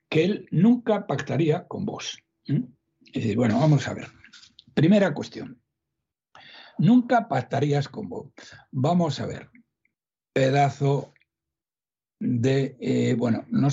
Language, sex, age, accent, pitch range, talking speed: Spanish, male, 60-79, Spanish, 130-215 Hz, 110 wpm